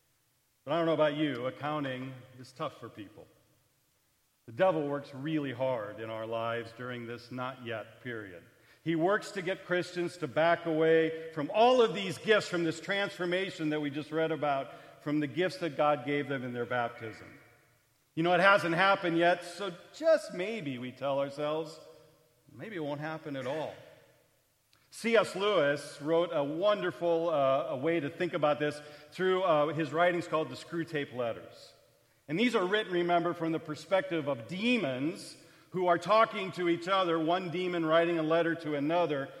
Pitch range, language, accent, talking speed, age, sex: 140-175 Hz, English, American, 175 wpm, 40-59, male